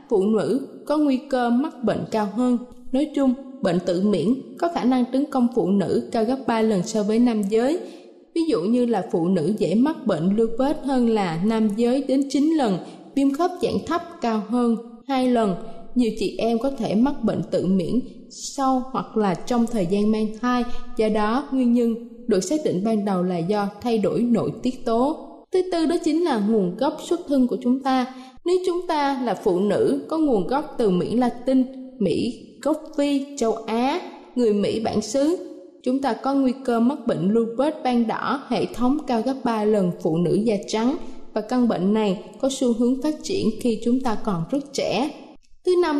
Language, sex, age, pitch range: Thai, female, 20-39, 220-275 Hz